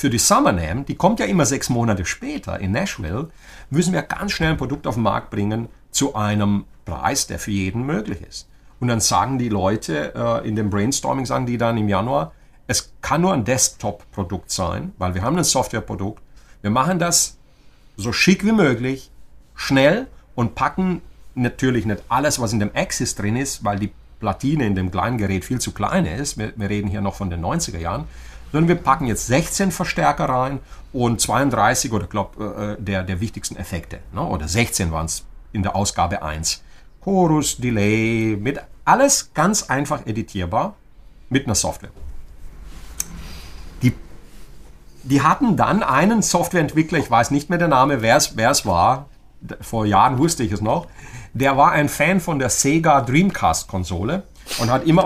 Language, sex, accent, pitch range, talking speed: German, male, German, 100-140 Hz, 170 wpm